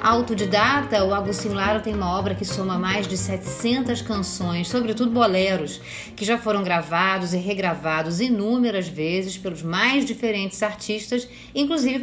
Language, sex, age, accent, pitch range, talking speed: Portuguese, female, 40-59, Brazilian, 190-245 Hz, 140 wpm